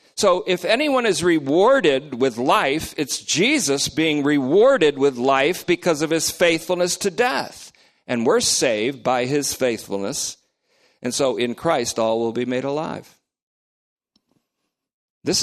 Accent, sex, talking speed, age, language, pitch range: American, male, 135 wpm, 50-69, English, 110-165 Hz